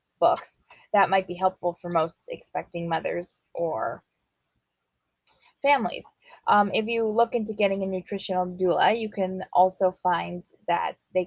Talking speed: 140 wpm